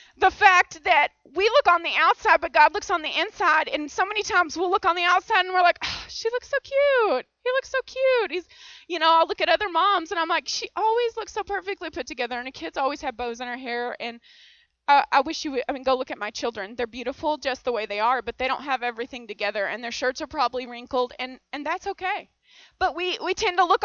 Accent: American